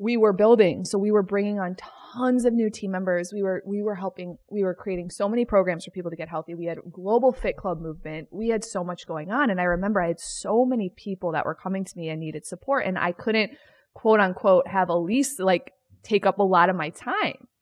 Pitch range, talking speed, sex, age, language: 185-265 Hz, 245 wpm, female, 20-39, English